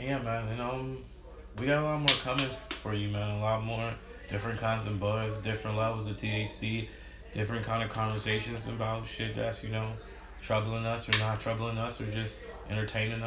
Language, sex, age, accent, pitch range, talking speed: English, male, 20-39, American, 105-115 Hz, 190 wpm